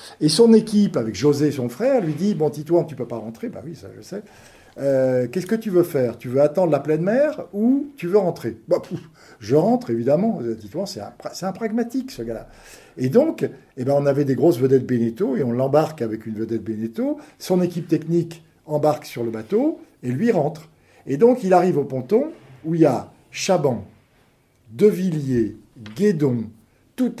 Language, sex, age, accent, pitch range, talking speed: French, male, 50-69, French, 125-190 Hz, 215 wpm